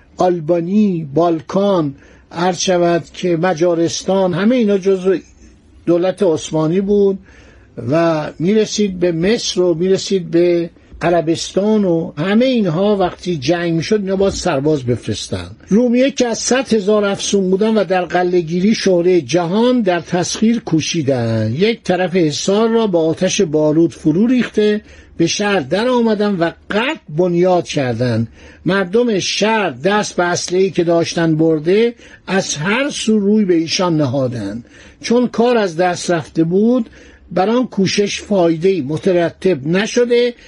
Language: Persian